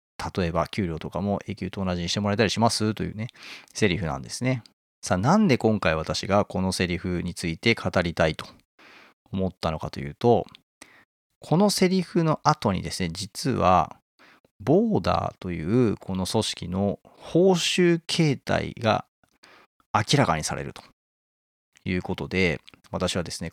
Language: Japanese